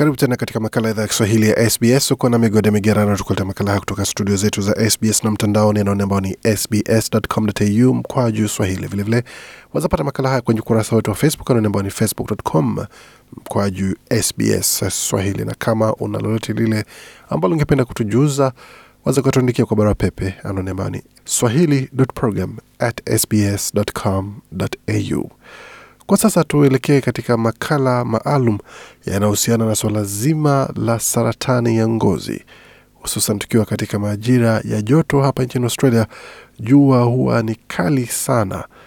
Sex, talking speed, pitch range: male, 135 wpm, 105-125 Hz